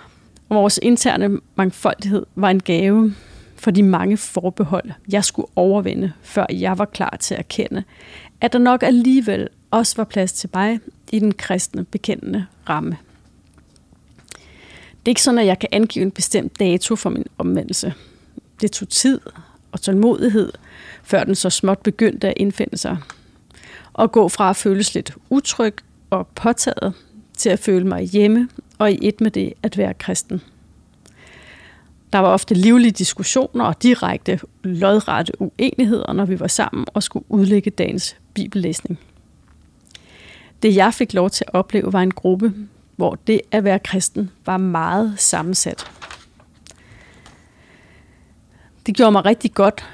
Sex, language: female, English